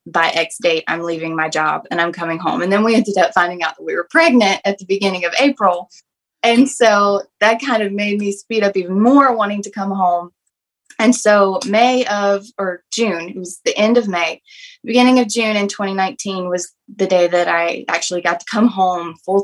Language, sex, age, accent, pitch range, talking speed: English, female, 20-39, American, 180-230 Hz, 215 wpm